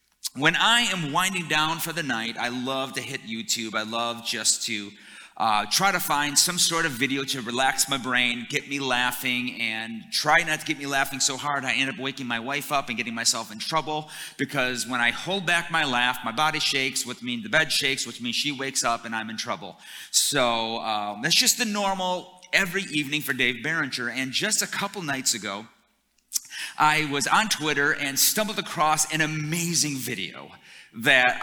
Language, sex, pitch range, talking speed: English, male, 120-165 Hz, 200 wpm